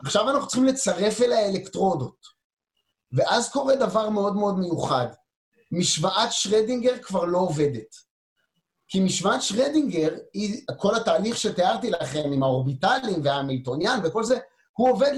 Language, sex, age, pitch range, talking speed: Hebrew, male, 30-49, 160-245 Hz, 125 wpm